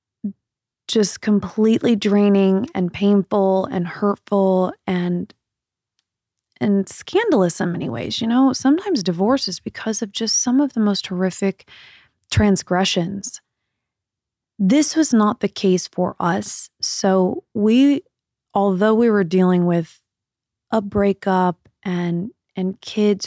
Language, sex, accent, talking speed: English, female, American, 120 wpm